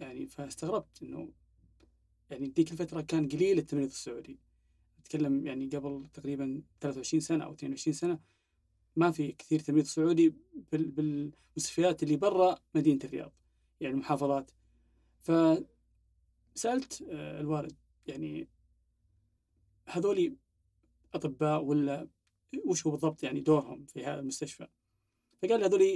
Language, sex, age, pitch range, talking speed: Arabic, male, 30-49, 140-165 Hz, 110 wpm